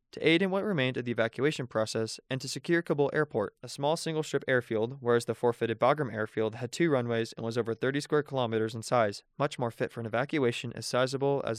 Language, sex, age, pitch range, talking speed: English, male, 20-39, 115-150 Hz, 225 wpm